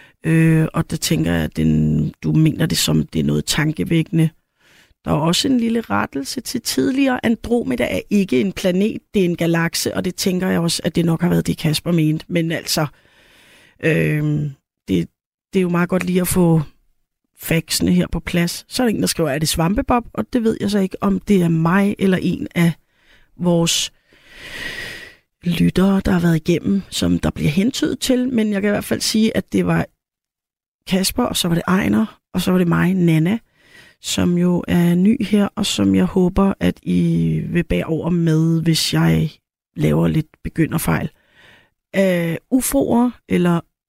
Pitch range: 155-195 Hz